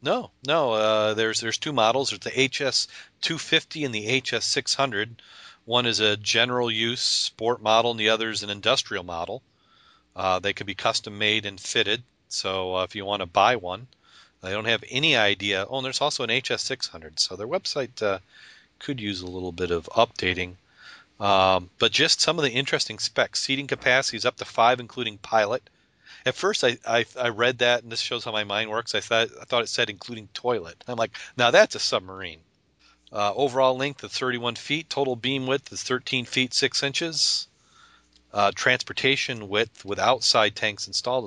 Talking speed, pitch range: 185 wpm, 100-130 Hz